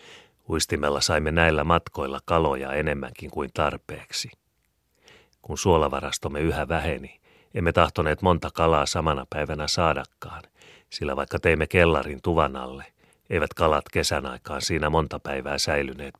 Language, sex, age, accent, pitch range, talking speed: Finnish, male, 30-49, native, 70-80 Hz, 120 wpm